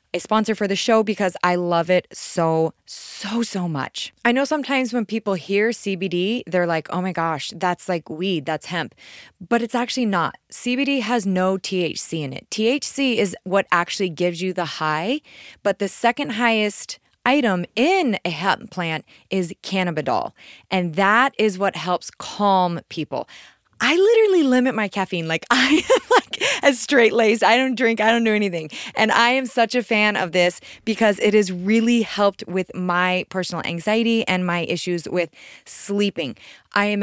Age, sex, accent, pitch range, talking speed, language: 20-39, female, American, 175-230 Hz, 175 wpm, English